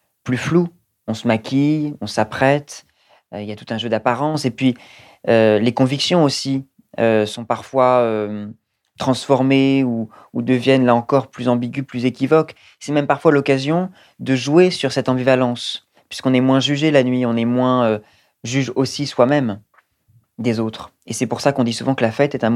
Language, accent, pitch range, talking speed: French, French, 115-135 Hz, 190 wpm